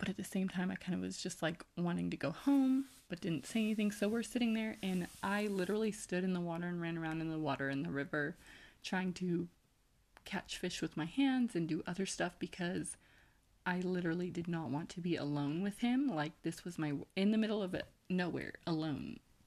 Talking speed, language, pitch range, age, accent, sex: 220 wpm, English, 160-200 Hz, 20-39, American, female